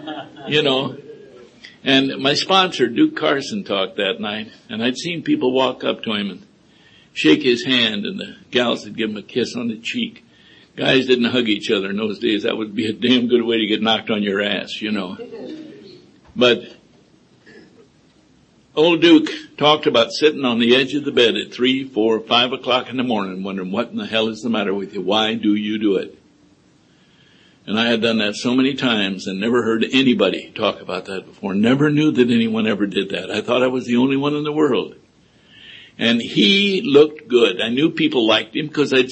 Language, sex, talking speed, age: English, male, 205 wpm, 60-79